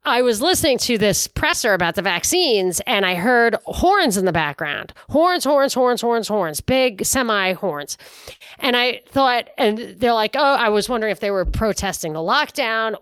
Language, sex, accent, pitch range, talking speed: English, female, American, 180-255 Hz, 190 wpm